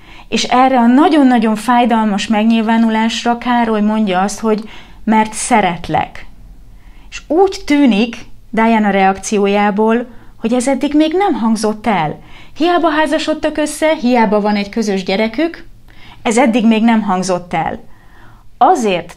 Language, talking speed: Hungarian, 120 wpm